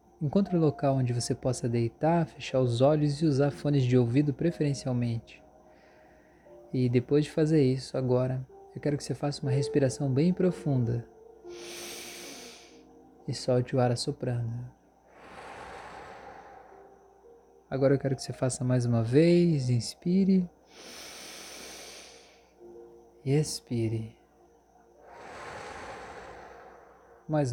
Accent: Brazilian